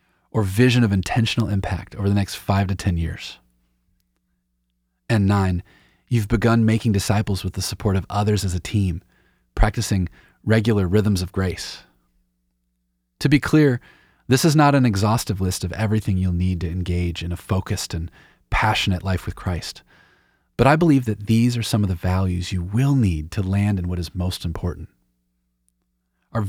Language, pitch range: English, 85-110 Hz